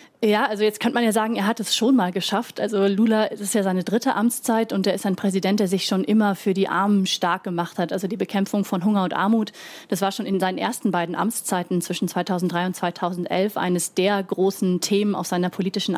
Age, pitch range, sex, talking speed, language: 30-49, 185-215 Hz, female, 230 wpm, German